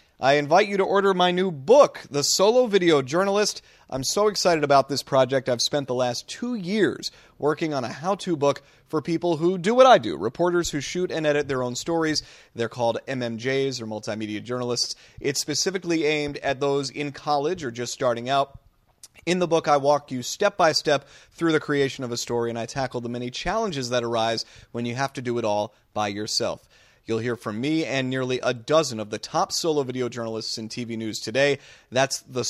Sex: male